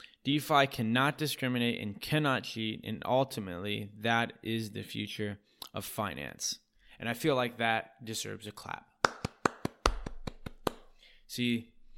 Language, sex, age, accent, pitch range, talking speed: English, male, 20-39, American, 105-120 Hz, 115 wpm